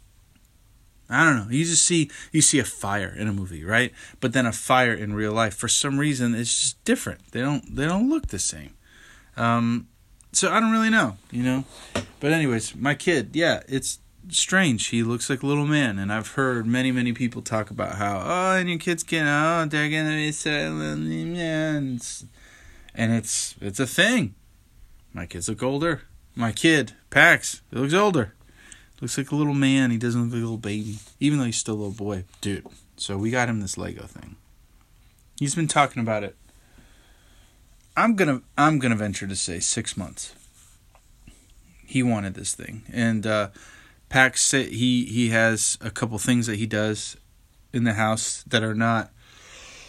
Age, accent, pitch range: 20-39, American, 105-140 Hz